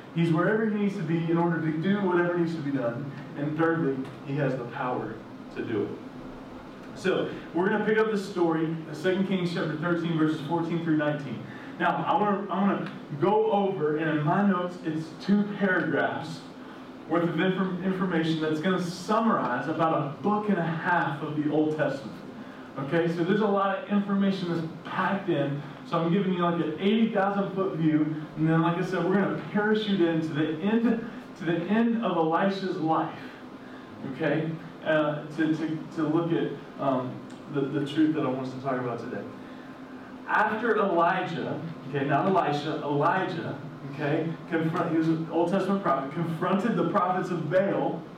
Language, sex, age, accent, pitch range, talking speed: English, male, 20-39, American, 155-195 Hz, 180 wpm